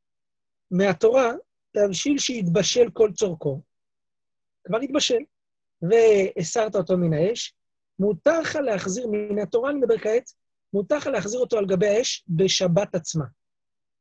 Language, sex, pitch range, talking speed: Hebrew, male, 175-230 Hz, 115 wpm